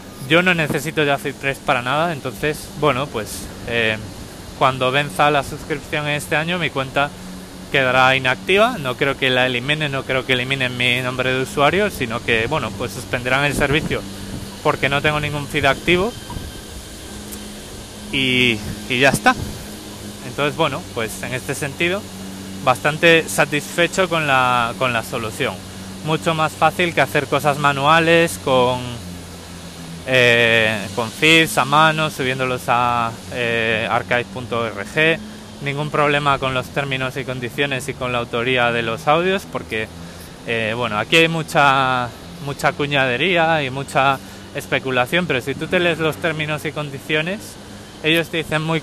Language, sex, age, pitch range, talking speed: Spanish, male, 20-39, 115-150 Hz, 145 wpm